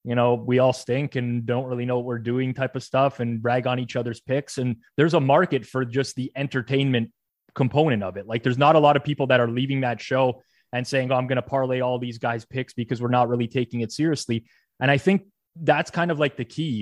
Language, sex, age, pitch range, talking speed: English, male, 20-39, 115-135 Hz, 255 wpm